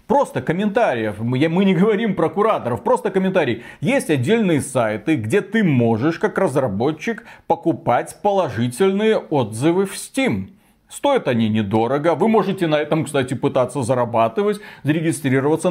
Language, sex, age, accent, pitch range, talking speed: Russian, male, 30-49, native, 130-185 Hz, 125 wpm